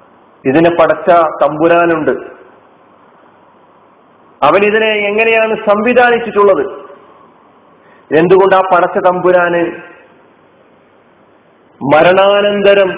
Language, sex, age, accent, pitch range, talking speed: Malayalam, male, 40-59, native, 160-205 Hz, 55 wpm